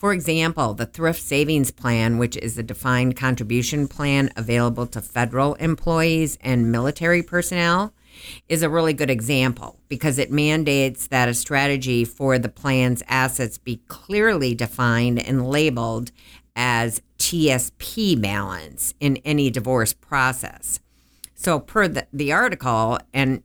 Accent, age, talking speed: American, 50-69, 135 wpm